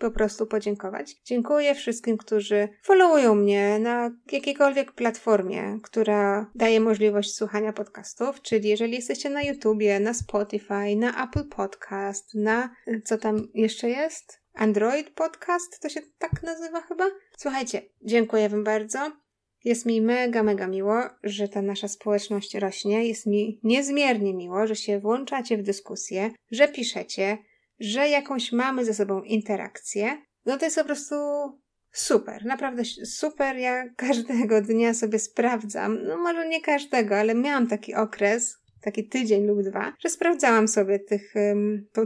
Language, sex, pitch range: Polish, female, 210-275 Hz